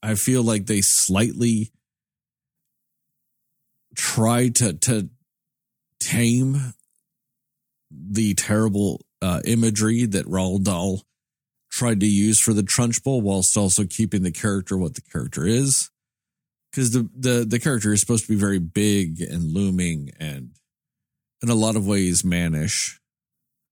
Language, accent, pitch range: English, American, 95-120 Hz